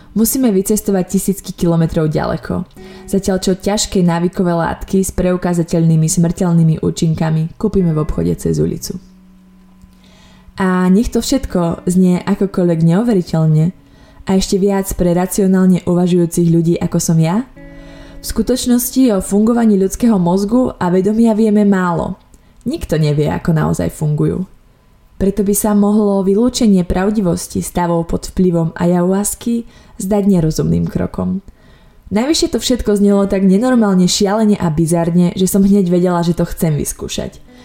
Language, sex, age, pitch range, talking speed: Slovak, female, 20-39, 170-210 Hz, 130 wpm